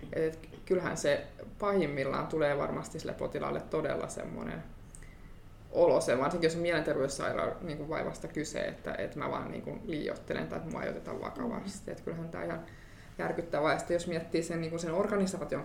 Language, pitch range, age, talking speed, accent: Finnish, 165-200 Hz, 20-39, 140 wpm, native